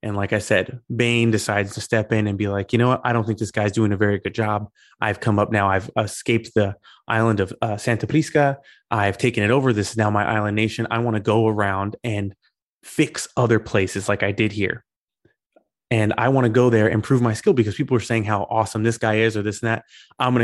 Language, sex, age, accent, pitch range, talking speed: English, male, 20-39, American, 105-120 Hz, 250 wpm